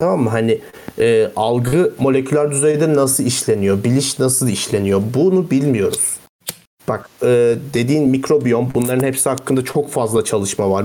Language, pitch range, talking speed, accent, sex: Turkish, 115-145 Hz, 140 wpm, native, male